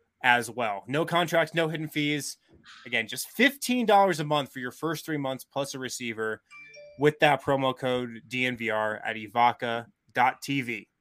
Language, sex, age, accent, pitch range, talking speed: English, male, 20-39, American, 125-170 Hz, 155 wpm